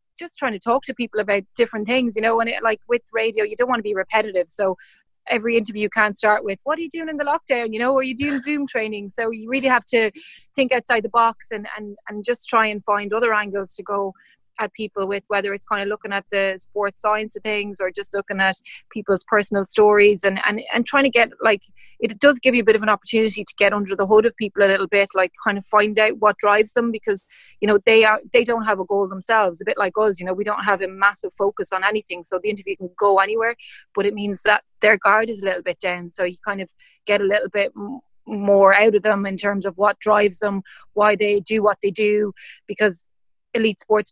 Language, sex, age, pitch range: English, female, 30-49, 195-220 Hz